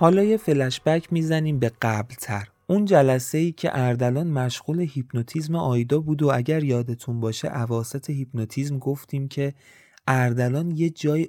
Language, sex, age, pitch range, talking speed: Persian, male, 30-49, 110-155 Hz, 140 wpm